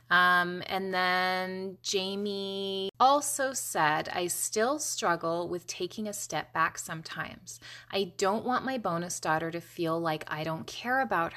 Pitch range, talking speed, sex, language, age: 160-200 Hz, 150 wpm, female, English, 20-39